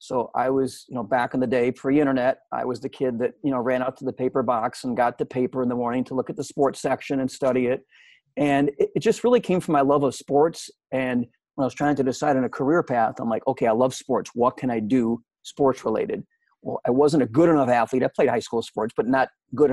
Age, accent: 40-59, American